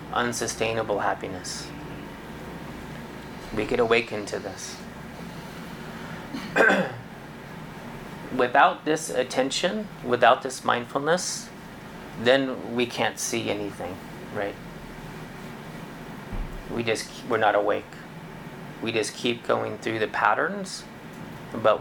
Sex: male